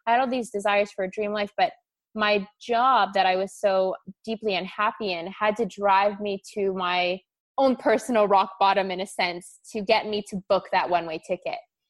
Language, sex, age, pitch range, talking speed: English, female, 20-39, 180-205 Hz, 190 wpm